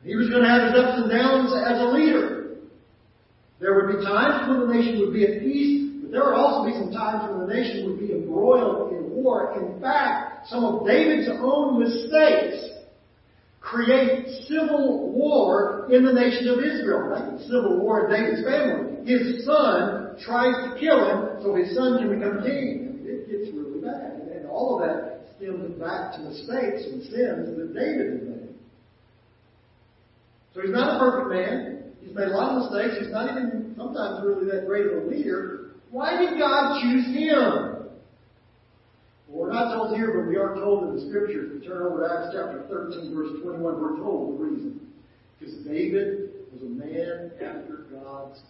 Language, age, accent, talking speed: English, 40-59, American, 185 wpm